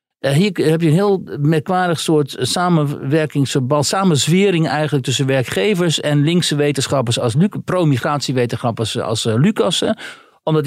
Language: Dutch